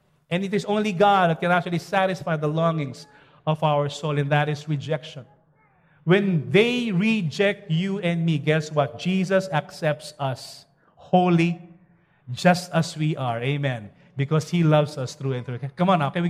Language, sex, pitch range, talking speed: English, male, 150-210 Hz, 175 wpm